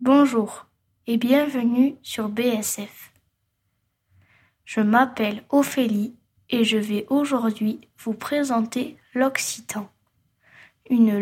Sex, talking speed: female, 85 wpm